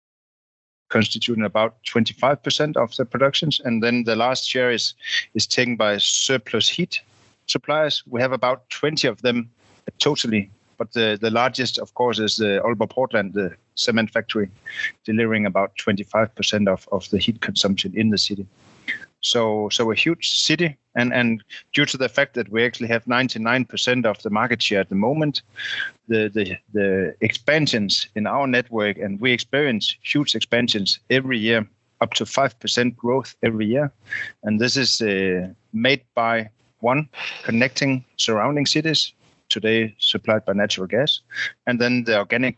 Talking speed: 155 wpm